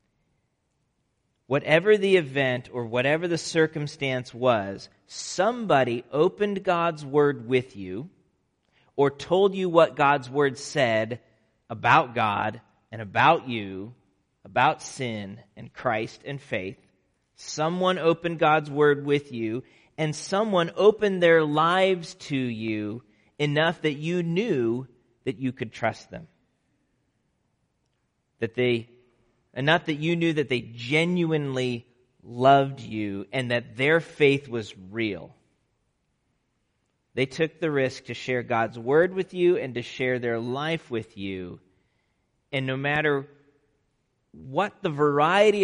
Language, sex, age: English, male, 40-59